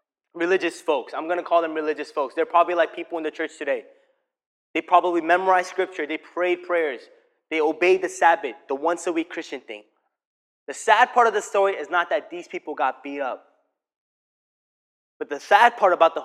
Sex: male